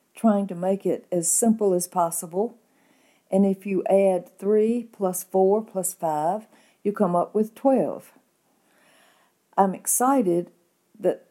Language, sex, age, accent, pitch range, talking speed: English, female, 60-79, American, 185-230 Hz, 135 wpm